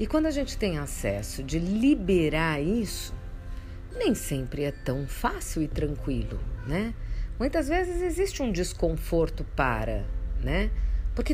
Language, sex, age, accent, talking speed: Portuguese, female, 50-69, Brazilian, 130 wpm